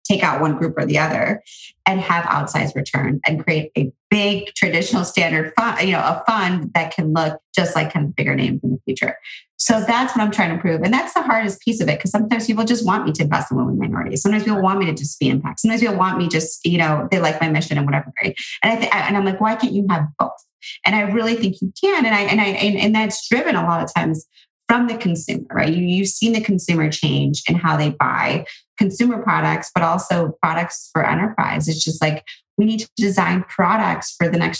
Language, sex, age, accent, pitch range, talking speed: English, female, 30-49, American, 160-210 Hz, 240 wpm